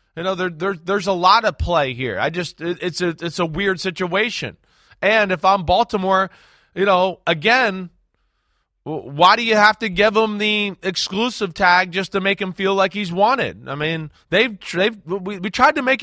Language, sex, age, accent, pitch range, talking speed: English, male, 20-39, American, 175-220 Hz, 195 wpm